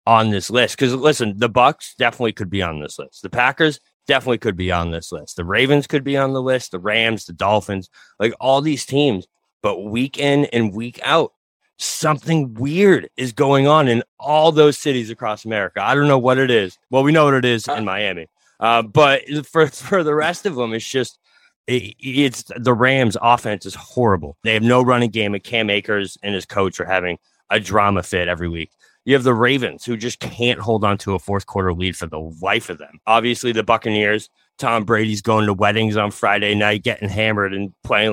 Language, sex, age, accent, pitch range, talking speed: English, male, 30-49, American, 105-135 Hz, 215 wpm